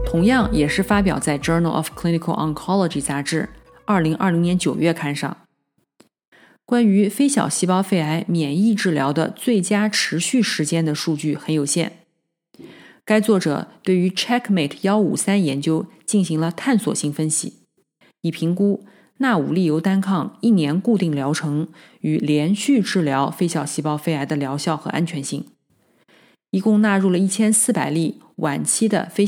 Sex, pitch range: female, 155-205 Hz